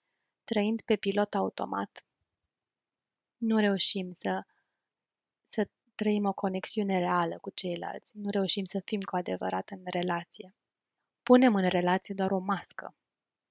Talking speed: 125 wpm